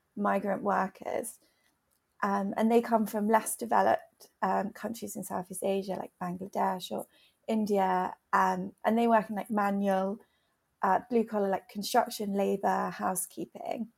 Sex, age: female, 30-49